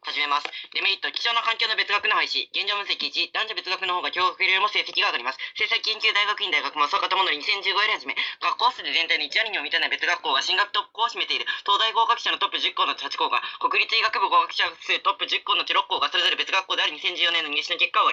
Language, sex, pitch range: Japanese, female, 180-225 Hz